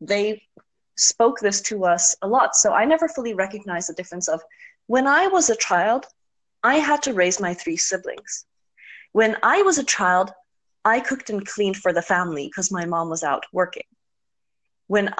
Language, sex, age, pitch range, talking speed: English, female, 30-49, 175-235 Hz, 180 wpm